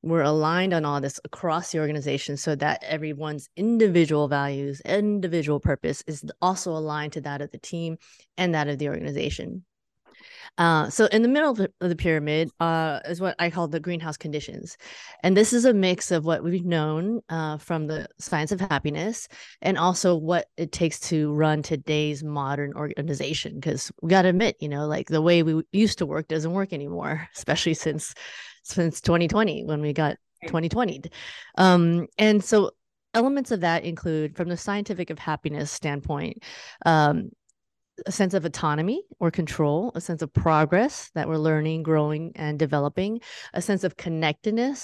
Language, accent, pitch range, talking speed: English, American, 150-185 Hz, 175 wpm